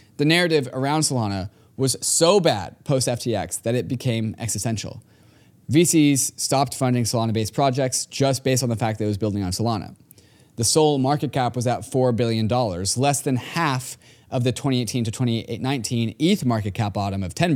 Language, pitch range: English, 110-135 Hz